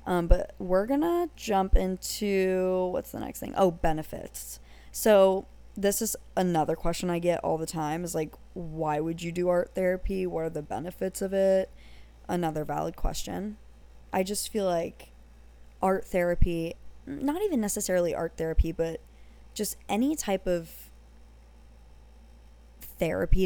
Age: 20-39